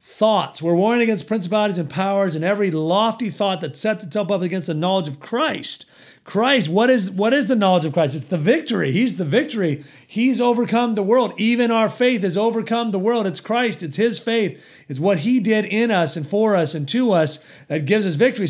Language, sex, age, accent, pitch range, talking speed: English, male, 40-59, American, 170-225 Hz, 215 wpm